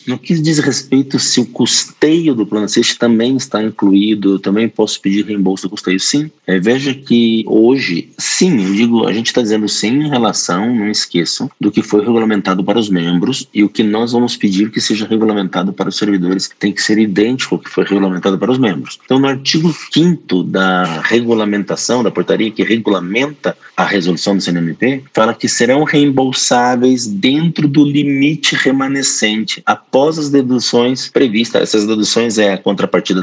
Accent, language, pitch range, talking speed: Brazilian, Portuguese, 105-135 Hz, 175 wpm